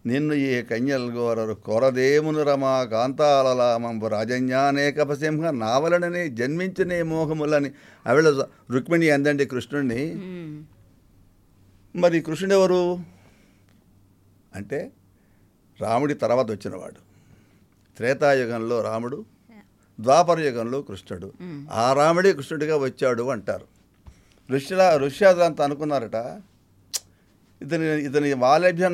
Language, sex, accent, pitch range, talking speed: Telugu, male, native, 100-150 Hz, 75 wpm